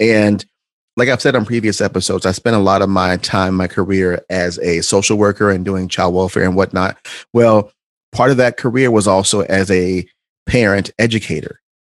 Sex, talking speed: male, 190 wpm